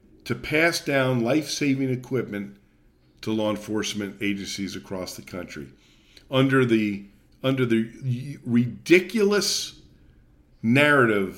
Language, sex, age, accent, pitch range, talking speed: English, male, 50-69, American, 95-120 Hz, 95 wpm